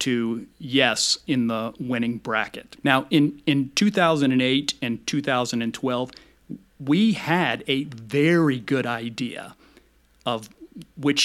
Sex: male